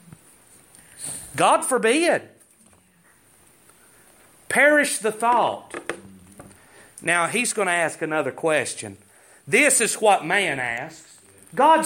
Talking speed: 90 wpm